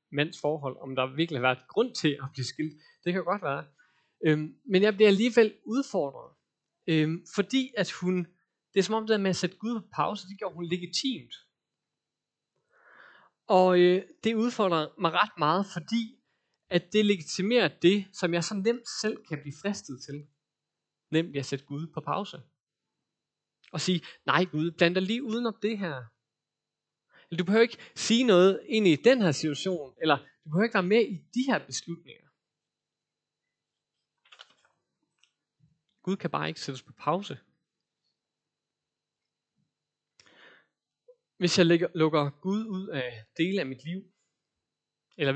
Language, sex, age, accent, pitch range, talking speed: Danish, male, 30-49, native, 150-205 Hz, 155 wpm